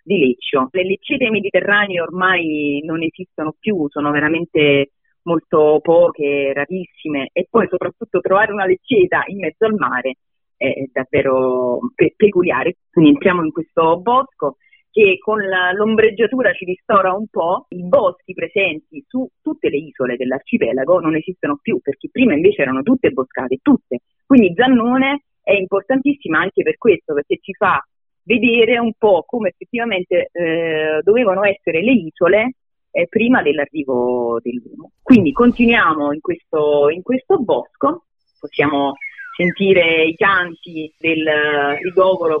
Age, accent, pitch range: 30-49, native, 155-235 Hz